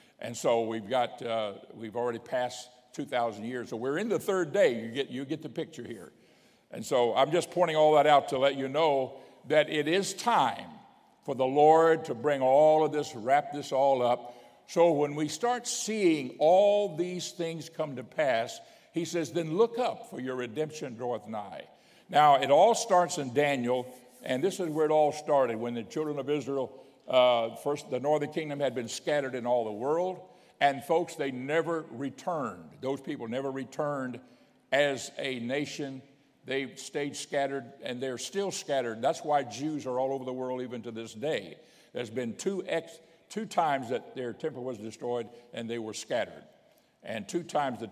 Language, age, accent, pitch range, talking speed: English, 60-79, American, 125-155 Hz, 190 wpm